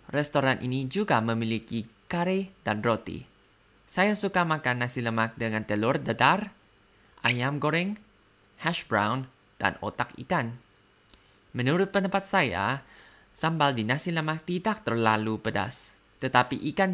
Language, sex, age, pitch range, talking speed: Indonesian, male, 20-39, 110-150 Hz, 120 wpm